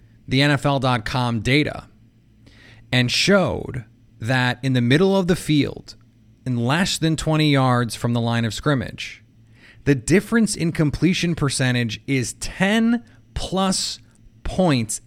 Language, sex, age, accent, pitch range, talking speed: English, male, 30-49, American, 115-145 Hz, 120 wpm